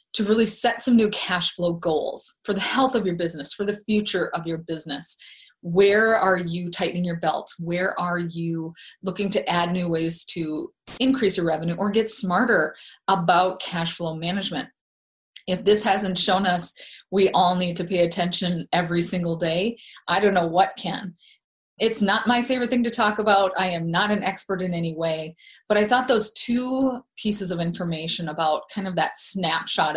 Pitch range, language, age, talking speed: 165-210 Hz, English, 30-49, 185 wpm